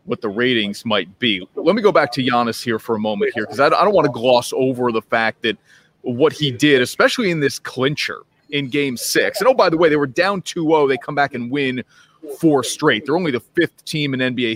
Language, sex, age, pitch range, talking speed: English, male, 30-49, 125-165 Hz, 245 wpm